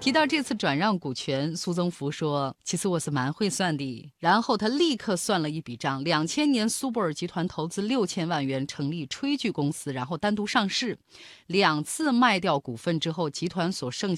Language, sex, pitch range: Chinese, female, 150-235 Hz